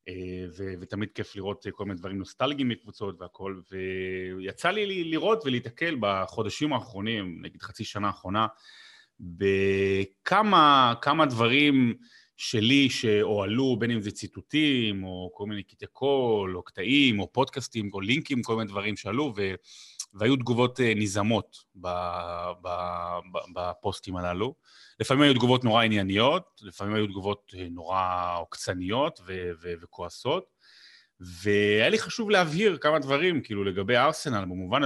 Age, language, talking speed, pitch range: 30-49, Hebrew, 120 wpm, 95-125 Hz